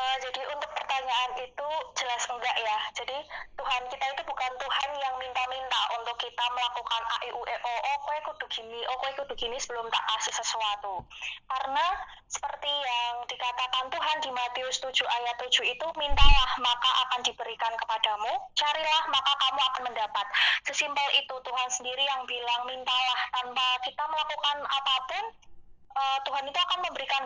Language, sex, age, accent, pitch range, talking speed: Indonesian, female, 20-39, native, 240-285 Hz, 155 wpm